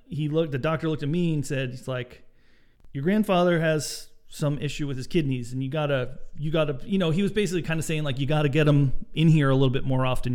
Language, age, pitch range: English, 40-59, 125-160 Hz